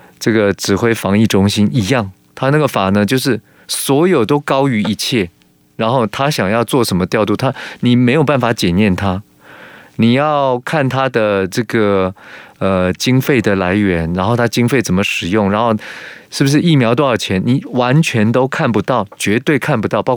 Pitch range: 100-130 Hz